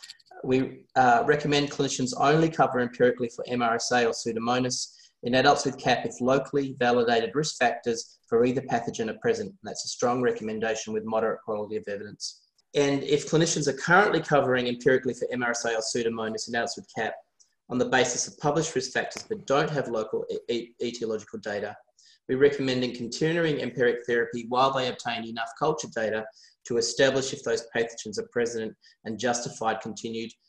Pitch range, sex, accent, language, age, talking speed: 115-150 Hz, male, Australian, English, 20-39, 165 wpm